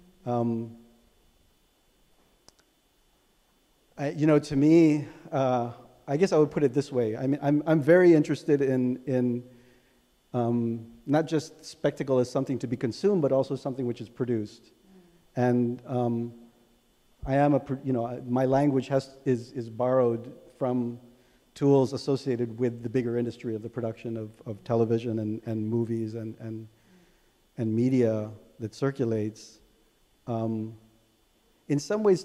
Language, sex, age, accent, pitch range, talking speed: English, male, 40-59, American, 115-135 Hz, 145 wpm